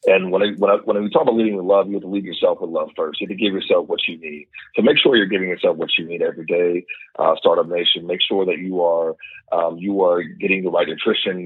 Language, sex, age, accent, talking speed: English, male, 40-59, American, 285 wpm